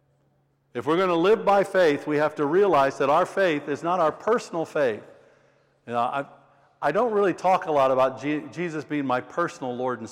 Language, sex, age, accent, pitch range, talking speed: English, male, 60-79, American, 130-175 Hz, 215 wpm